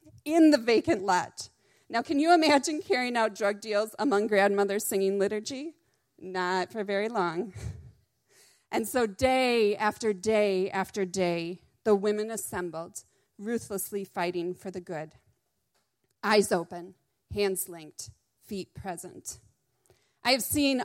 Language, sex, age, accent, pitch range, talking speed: English, female, 30-49, American, 190-235 Hz, 125 wpm